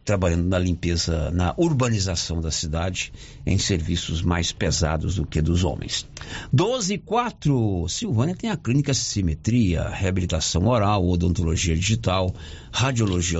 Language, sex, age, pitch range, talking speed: Portuguese, male, 60-79, 90-140 Hz, 125 wpm